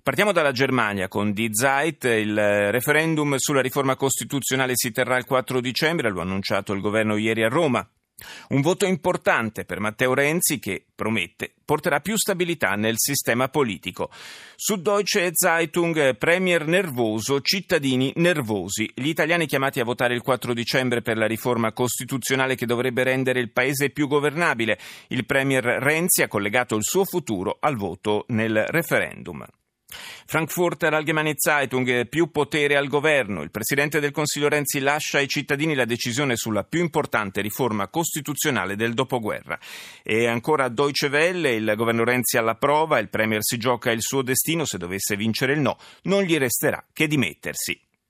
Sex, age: male, 30-49